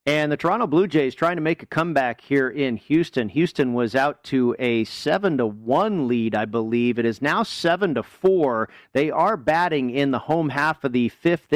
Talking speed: 195 wpm